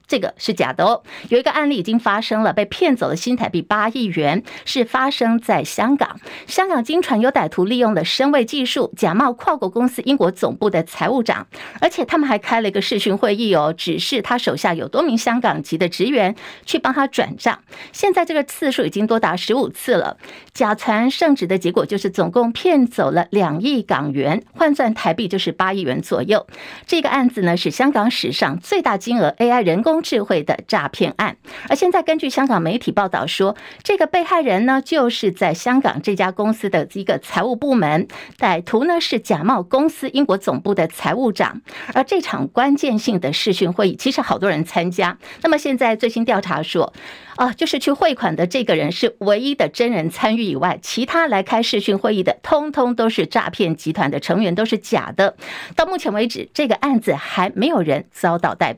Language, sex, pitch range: Chinese, female, 195-270 Hz